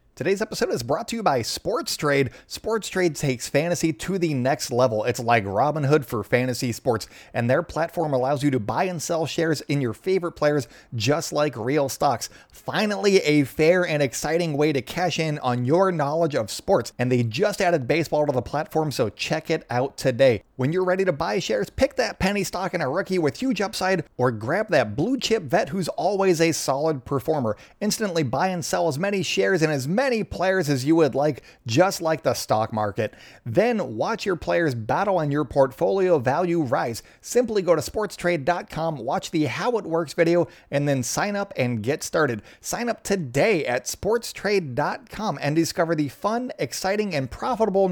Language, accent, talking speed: English, American, 195 wpm